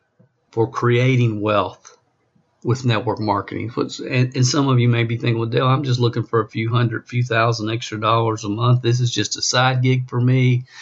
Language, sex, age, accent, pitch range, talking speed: English, male, 50-69, American, 110-125 Hz, 200 wpm